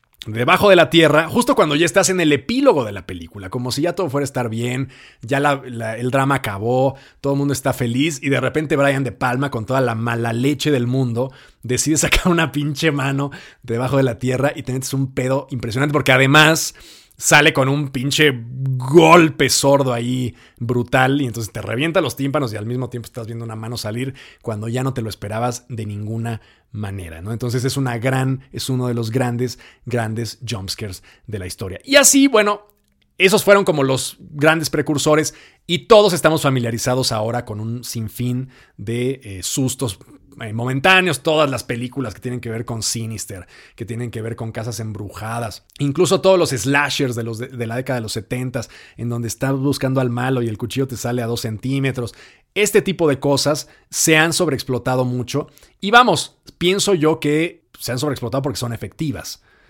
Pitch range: 120-145 Hz